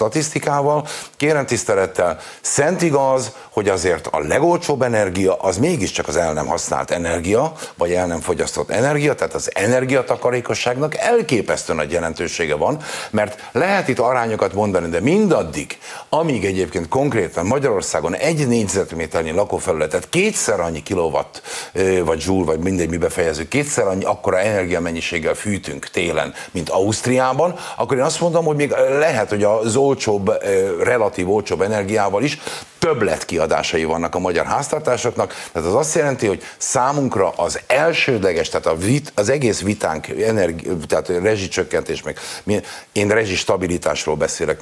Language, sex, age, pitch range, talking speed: Hungarian, male, 50-69, 105-165 Hz, 135 wpm